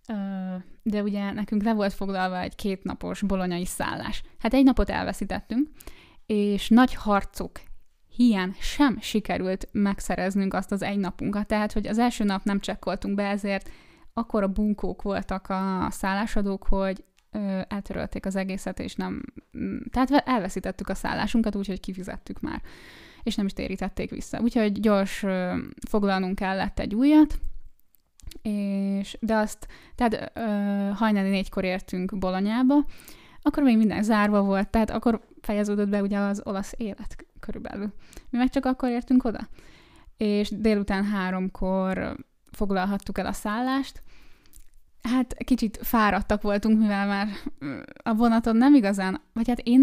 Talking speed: 135 wpm